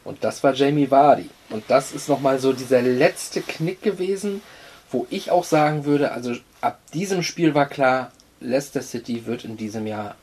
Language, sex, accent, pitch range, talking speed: German, male, German, 115-145 Hz, 180 wpm